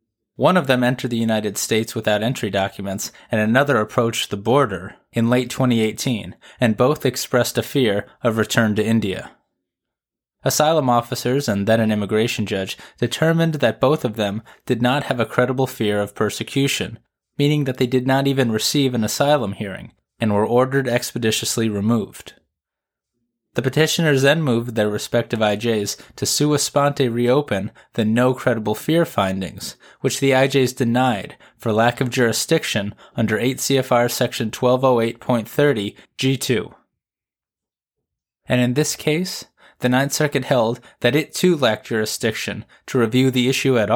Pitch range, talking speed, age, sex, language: 110-135 Hz, 145 wpm, 20-39, male, English